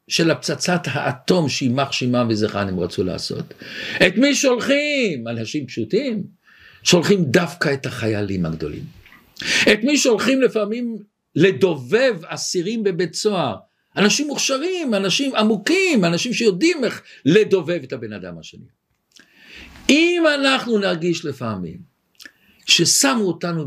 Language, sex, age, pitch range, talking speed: Hebrew, male, 50-69, 155-225 Hz, 115 wpm